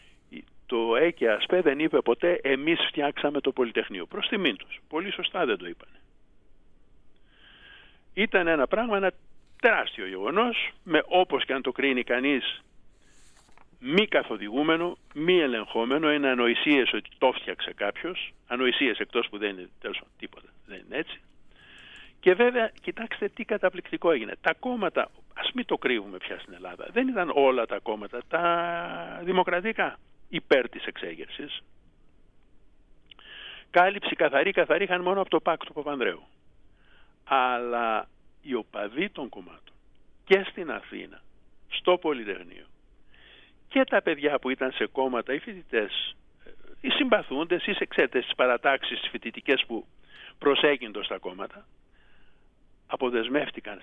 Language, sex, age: Greek, male, 50-69